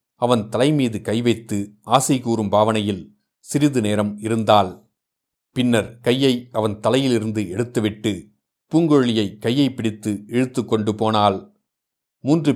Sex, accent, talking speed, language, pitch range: male, native, 105 wpm, Tamil, 105-125 Hz